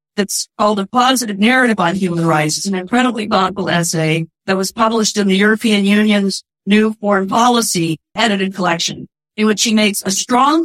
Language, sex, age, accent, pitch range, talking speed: English, female, 50-69, American, 190-230 Hz, 175 wpm